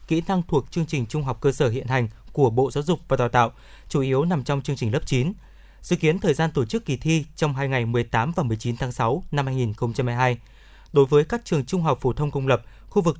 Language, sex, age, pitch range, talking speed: Vietnamese, male, 20-39, 130-165 Hz, 255 wpm